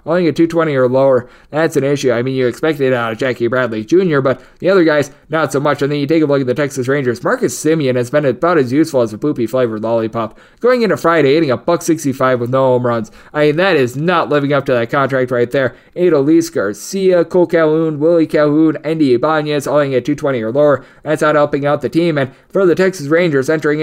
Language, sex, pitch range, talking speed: English, male, 130-155 Hz, 240 wpm